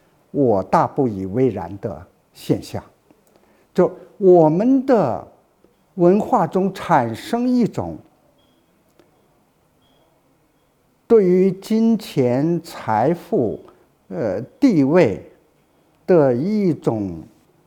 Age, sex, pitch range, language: 60-79, male, 135-215 Hz, Chinese